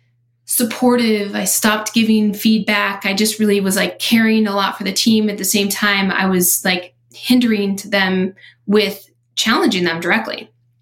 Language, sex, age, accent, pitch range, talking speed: English, female, 20-39, American, 190-220 Hz, 165 wpm